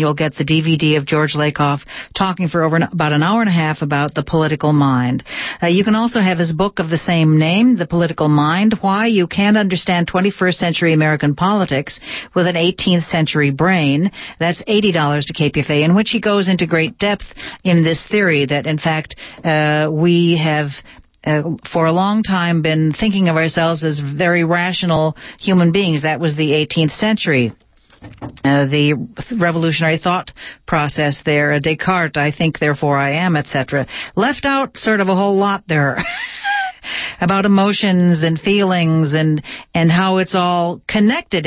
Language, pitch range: English, 150-185 Hz